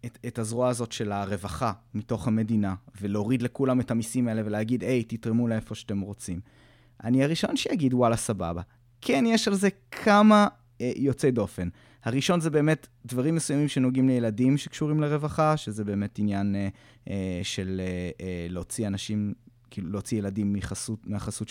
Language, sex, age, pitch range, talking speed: Hebrew, male, 20-39, 110-130 Hz, 150 wpm